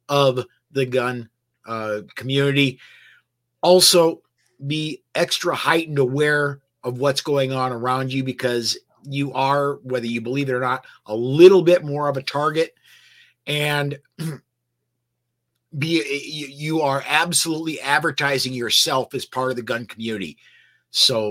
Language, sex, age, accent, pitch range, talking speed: English, male, 50-69, American, 120-145 Hz, 130 wpm